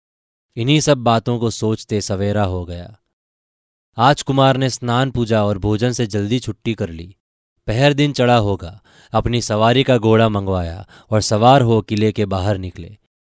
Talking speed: 165 wpm